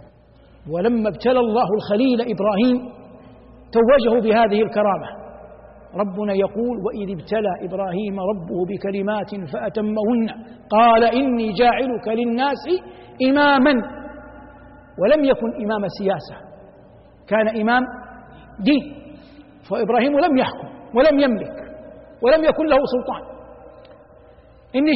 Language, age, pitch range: Arabic, 50-69, 200-275 Hz